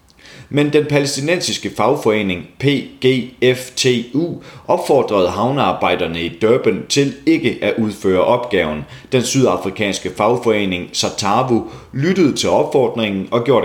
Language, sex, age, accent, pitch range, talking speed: Danish, male, 30-49, native, 100-130 Hz, 100 wpm